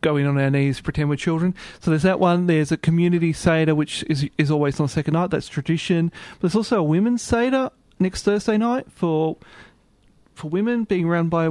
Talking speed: 215 wpm